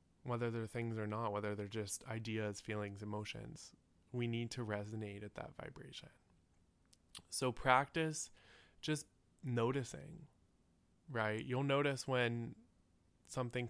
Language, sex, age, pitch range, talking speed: English, male, 20-39, 110-125 Hz, 120 wpm